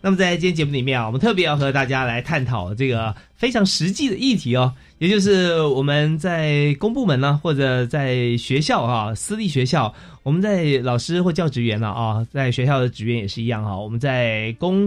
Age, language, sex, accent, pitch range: 30-49, Chinese, male, native, 120-165 Hz